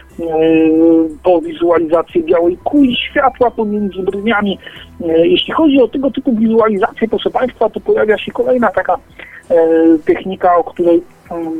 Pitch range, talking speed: 165-220 Hz, 125 wpm